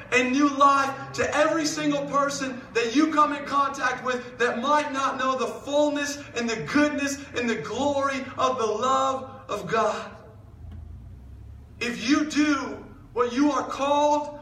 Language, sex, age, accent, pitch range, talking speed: English, male, 30-49, American, 230-280 Hz, 155 wpm